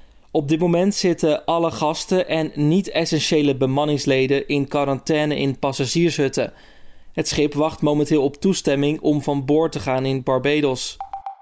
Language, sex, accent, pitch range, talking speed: Dutch, male, Dutch, 140-165 Hz, 135 wpm